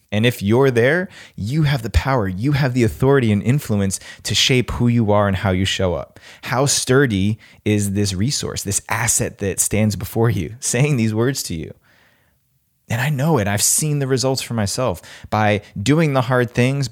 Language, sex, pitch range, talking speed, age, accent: English, male, 100-135 Hz, 195 wpm, 20-39, American